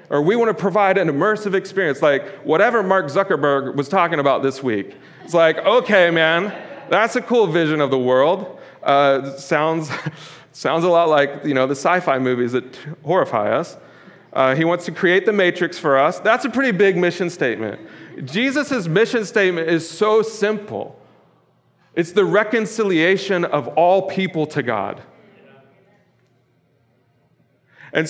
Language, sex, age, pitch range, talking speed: English, male, 40-59, 145-200 Hz, 155 wpm